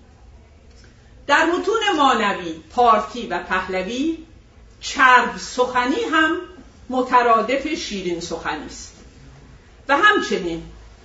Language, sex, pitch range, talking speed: Persian, female, 185-265 Hz, 80 wpm